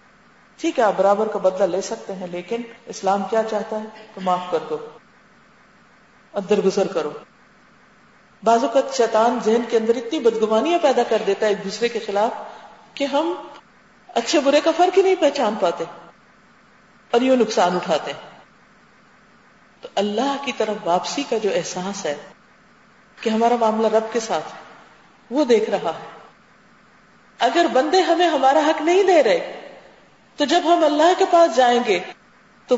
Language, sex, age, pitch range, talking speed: Urdu, female, 40-59, 205-280 Hz, 155 wpm